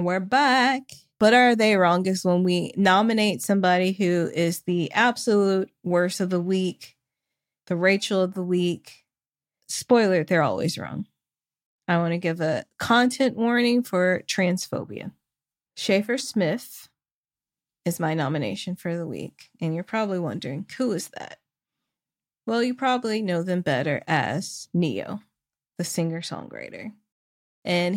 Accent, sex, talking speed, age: American, female, 135 wpm, 20-39